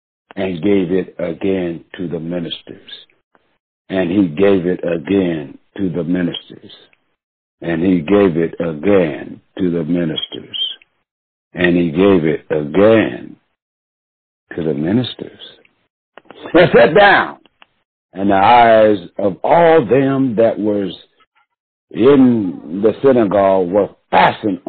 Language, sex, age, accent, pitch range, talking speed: English, male, 60-79, American, 85-100 Hz, 115 wpm